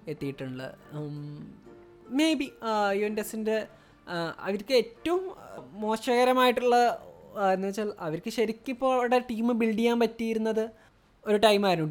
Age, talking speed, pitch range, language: 20-39, 100 wpm, 170-235 Hz, Malayalam